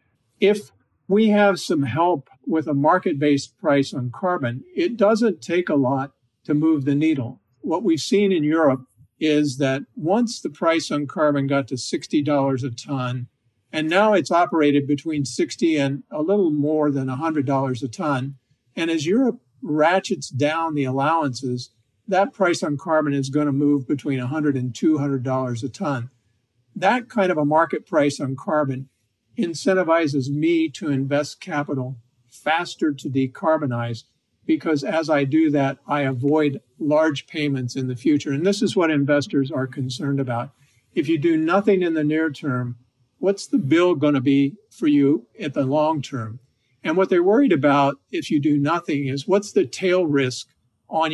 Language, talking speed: English, 165 wpm